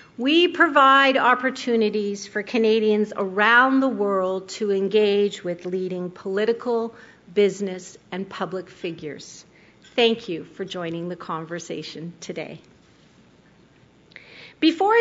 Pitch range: 195-250 Hz